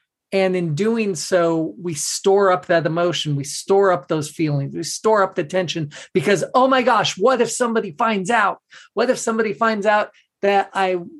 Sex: male